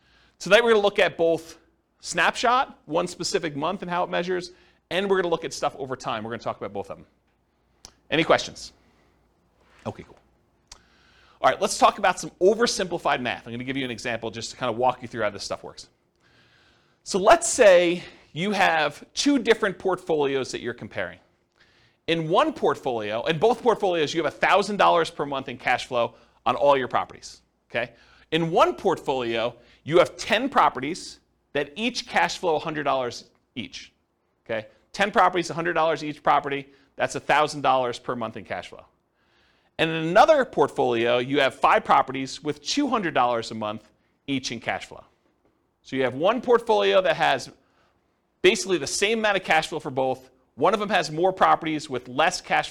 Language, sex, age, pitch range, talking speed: English, male, 40-59, 130-195 Hz, 175 wpm